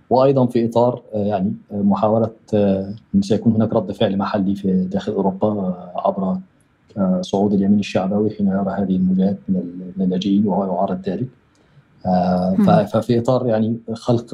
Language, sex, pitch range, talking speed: Arabic, male, 100-120 Hz, 125 wpm